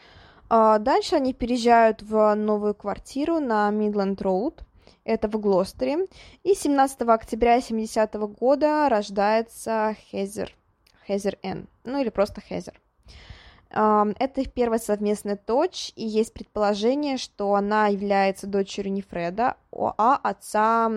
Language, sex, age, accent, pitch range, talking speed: Russian, female, 20-39, native, 200-240 Hz, 115 wpm